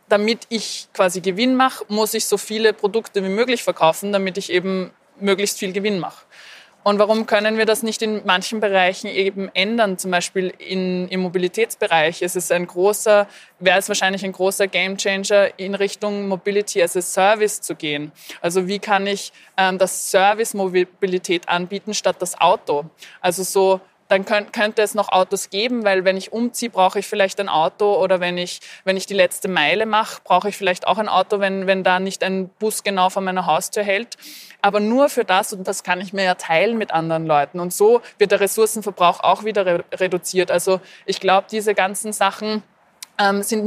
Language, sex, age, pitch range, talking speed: German, female, 20-39, 185-210 Hz, 190 wpm